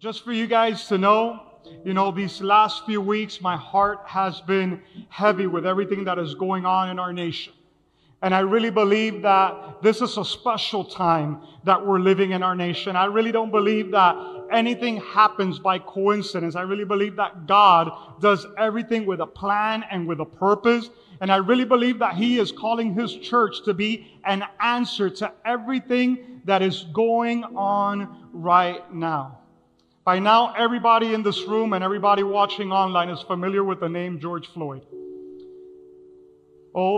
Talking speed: 170 wpm